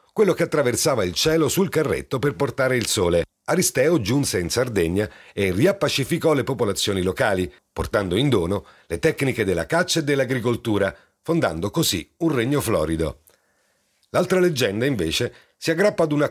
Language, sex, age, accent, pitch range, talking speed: Italian, male, 40-59, native, 105-155 Hz, 150 wpm